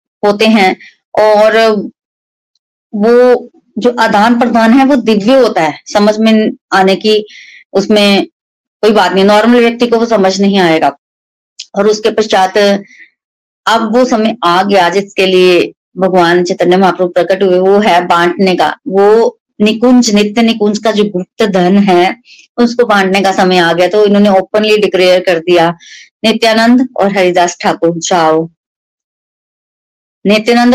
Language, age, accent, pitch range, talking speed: Hindi, 20-39, native, 185-225 Hz, 140 wpm